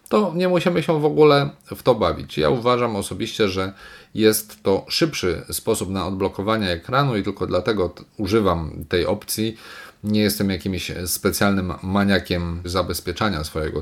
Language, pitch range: Polish, 85-110 Hz